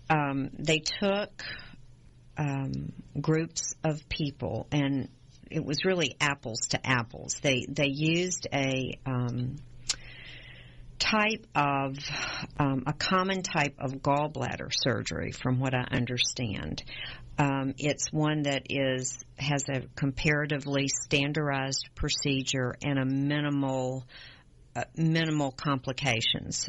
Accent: American